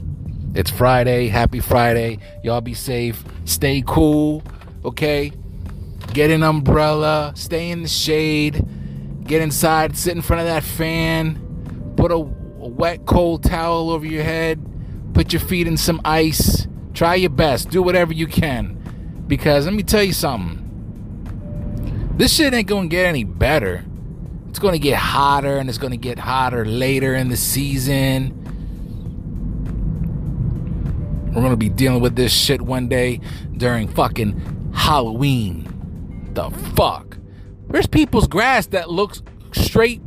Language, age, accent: English, 30-49, American